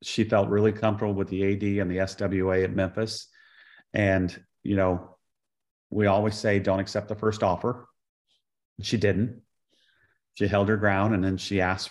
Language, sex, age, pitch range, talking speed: English, male, 40-59, 100-125 Hz, 165 wpm